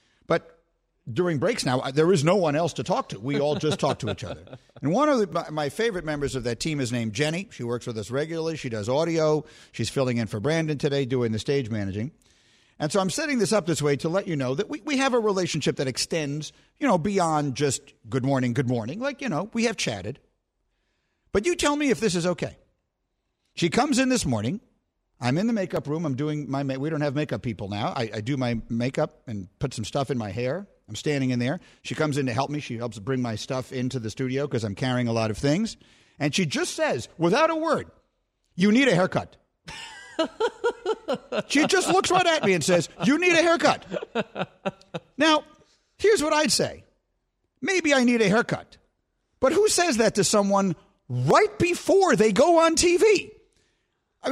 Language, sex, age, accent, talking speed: English, male, 50-69, American, 215 wpm